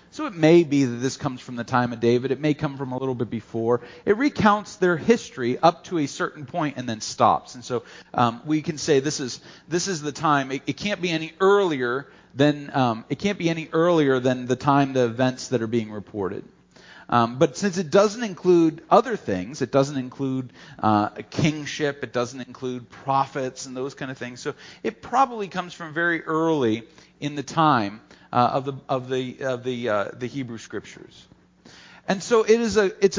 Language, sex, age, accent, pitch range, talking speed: English, male, 40-59, American, 125-175 Hz, 210 wpm